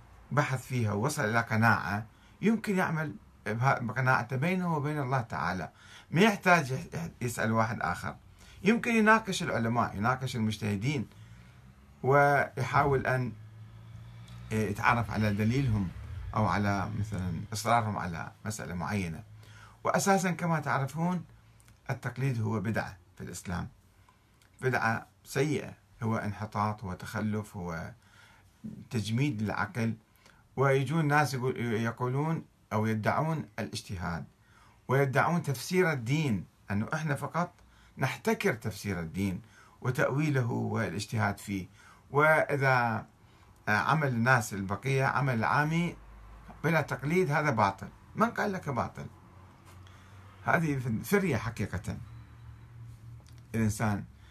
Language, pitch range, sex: Arabic, 105-135 Hz, male